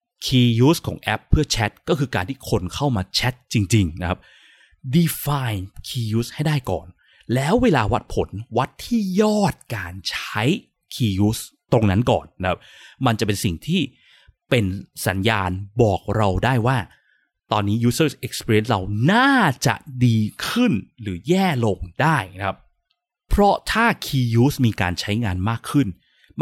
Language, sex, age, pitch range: Thai, male, 20-39, 105-155 Hz